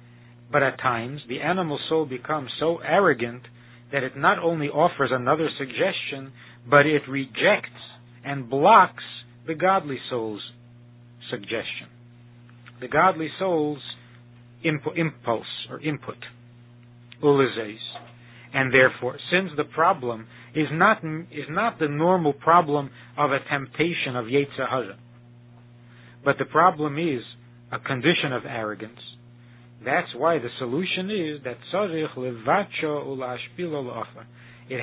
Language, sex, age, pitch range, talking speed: English, male, 50-69, 120-155 Hz, 110 wpm